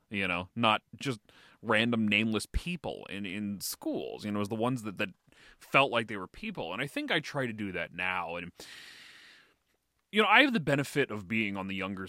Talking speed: 220 wpm